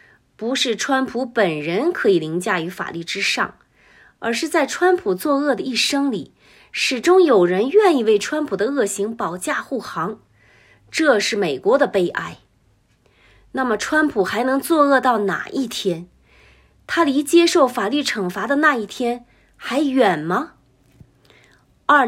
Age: 30-49